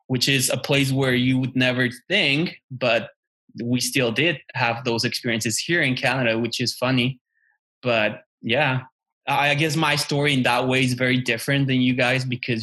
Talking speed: 180 wpm